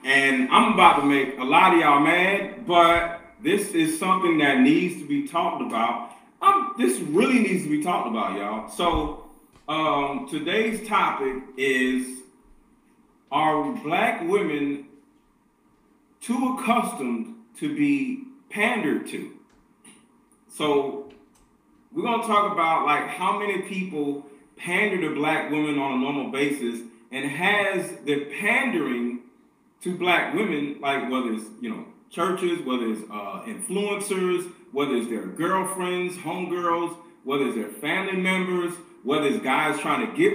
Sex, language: male, English